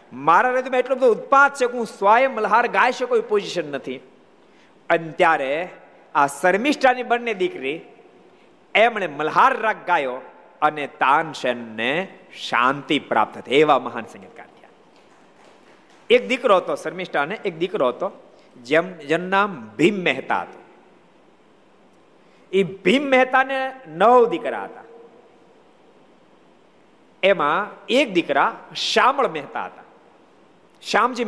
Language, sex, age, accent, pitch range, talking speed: Gujarati, male, 50-69, native, 150-245 Hz, 50 wpm